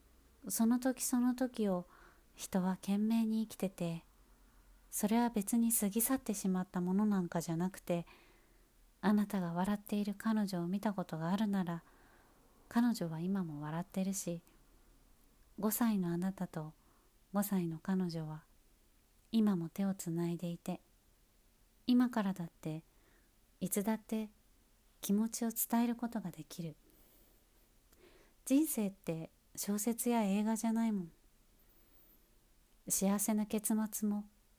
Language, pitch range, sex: Japanese, 170-220 Hz, female